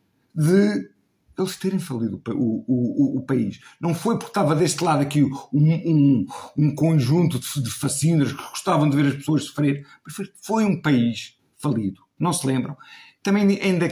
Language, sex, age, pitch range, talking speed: Portuguese, male, 50-69, 115-150 Hz, 170 wpm